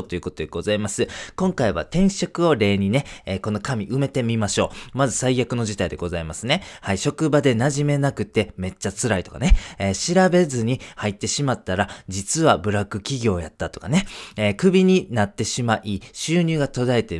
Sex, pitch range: male, 100-140 Hz